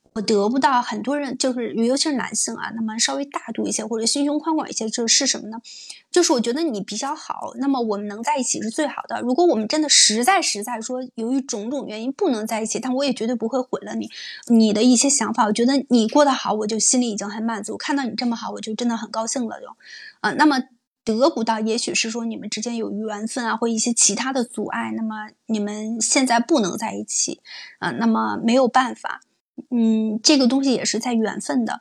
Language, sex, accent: Chinese, female, native